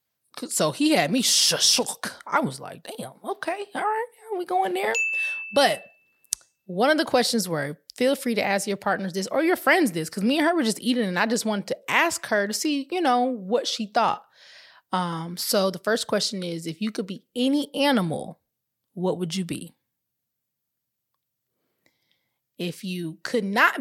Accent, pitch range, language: American, 165-245 Hz, English